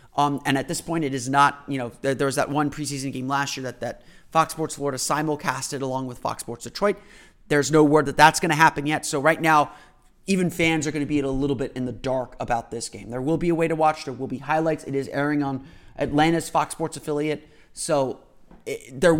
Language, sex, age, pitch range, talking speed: English, male, 30-49, 130-155 Hz, 245 wpm